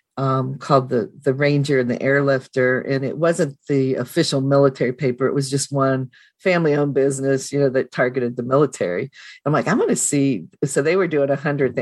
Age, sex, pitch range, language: 50-69, female, 135-170 Hz, English